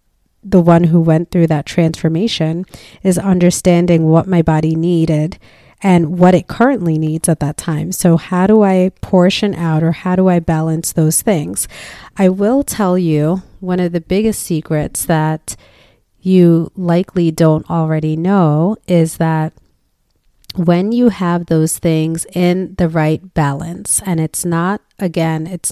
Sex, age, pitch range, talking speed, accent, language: female, 30-49, 160-180 Hz, 150 wpm, American, English